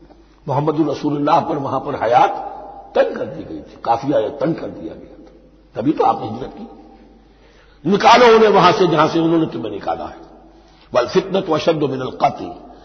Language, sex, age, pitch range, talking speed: Hindi, male, 60-79, 145-200 Hz, 180 wpm